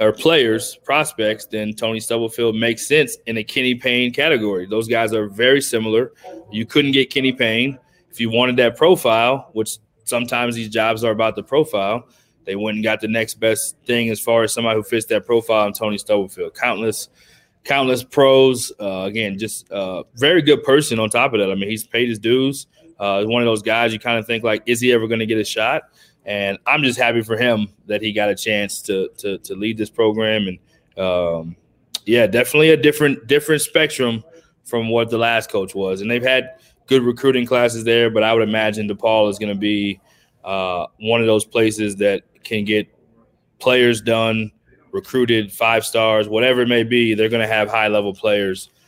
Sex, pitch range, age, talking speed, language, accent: male, 105-125 Hz, 20-39, 200 wpm, English, American